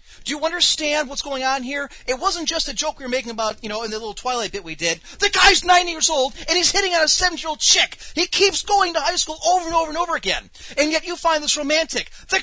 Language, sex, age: English, male, 30-49